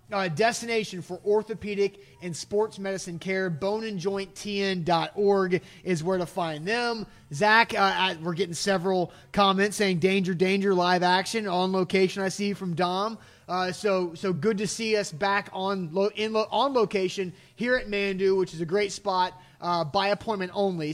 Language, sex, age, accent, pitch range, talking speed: English, male, 30-49, American, 170-200 Hz, 170 wpm